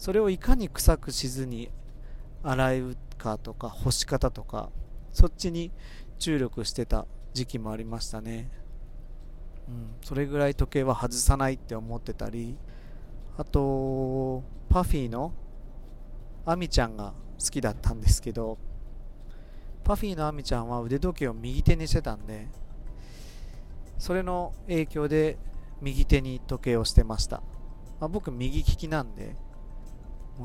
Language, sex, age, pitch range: Japanese, male, 40-59, 110-145 Hz